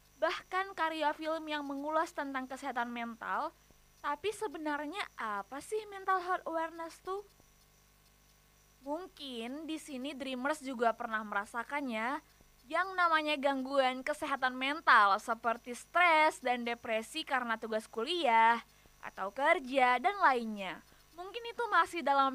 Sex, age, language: female, 20-39, Indonesian